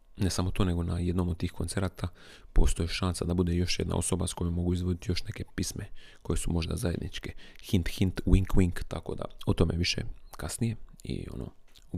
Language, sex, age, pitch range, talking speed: Croatian, male, 30-49, 85-100 Hz, 200 wpm